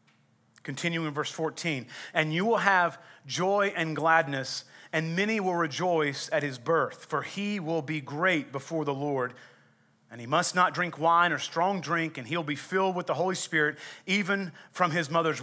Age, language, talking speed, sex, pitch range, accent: 30-49, English, 185 wpm, male, 145-180 Hz, American